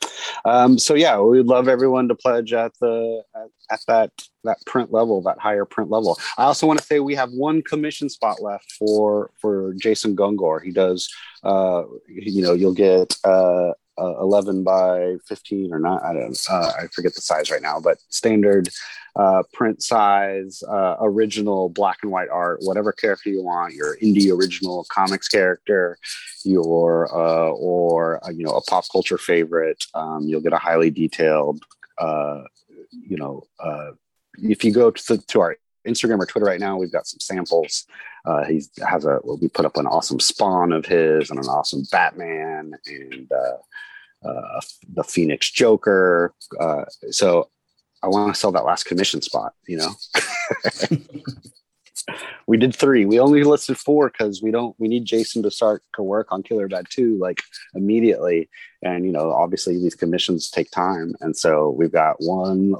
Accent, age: American, 30-49